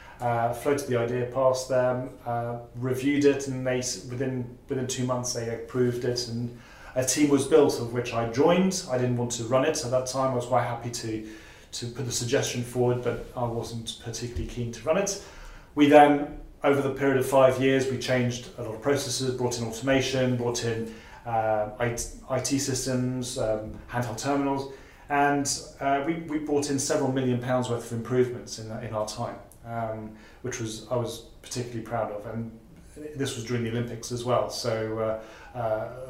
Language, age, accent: English, 30-49, British